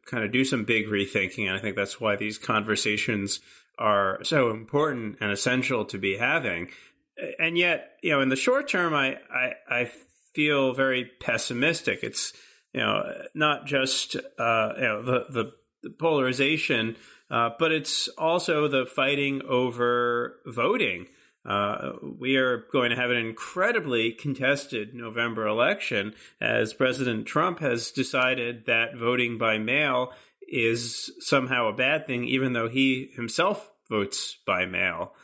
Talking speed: 145 wpm